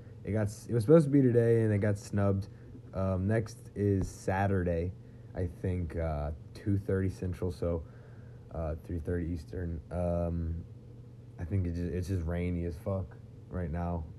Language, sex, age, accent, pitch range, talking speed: English, male, 20-39, American, 95-120 Hz, 155 wpm